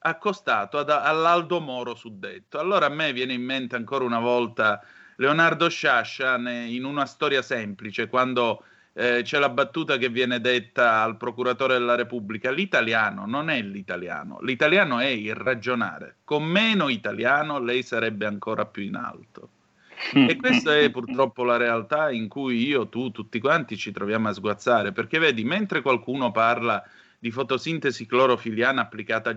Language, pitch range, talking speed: Italian, 115-140 Hz, 150 wpm